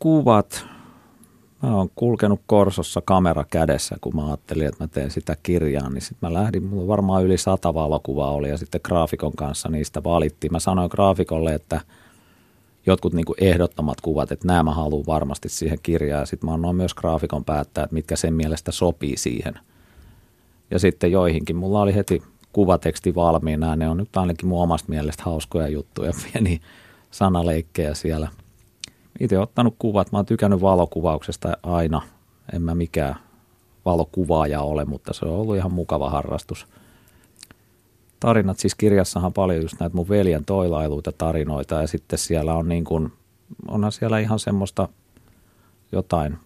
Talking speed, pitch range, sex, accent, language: 155 wpm, 80-100 Hz, male, native, Finnish